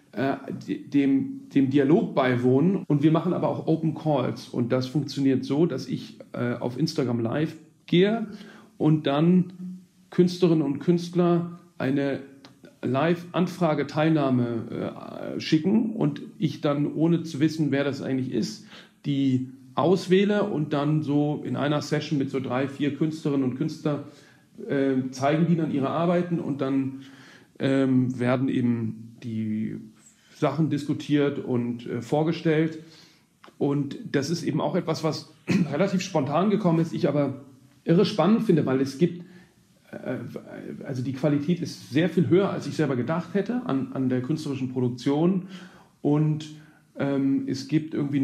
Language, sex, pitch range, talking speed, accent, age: German, male, 135-170 Hz, 145 wpm, German, 40-59